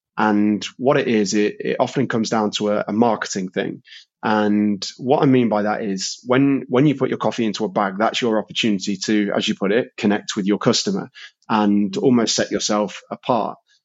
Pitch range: 100-115 Hz